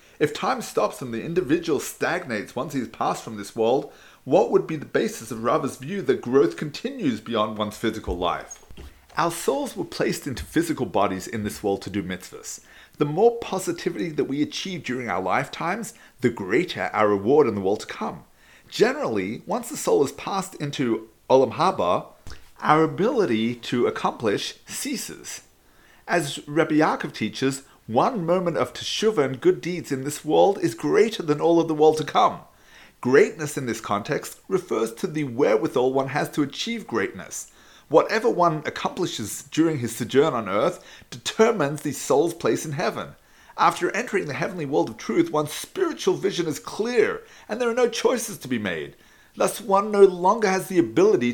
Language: English